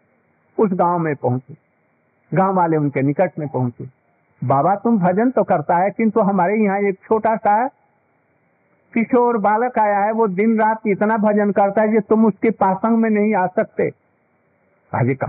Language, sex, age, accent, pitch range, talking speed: Hindi, male, 50-69, native, 155-220 Hz, 85 wpm